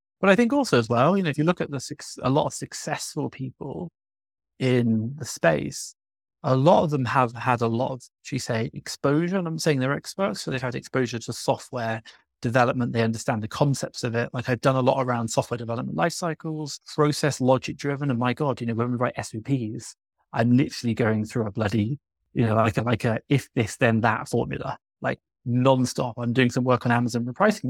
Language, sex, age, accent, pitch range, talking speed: English, male, 30-49, British, 120-145 Hz, 215 wpm